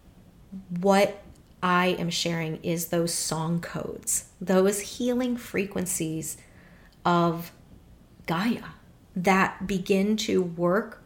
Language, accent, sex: English, American, female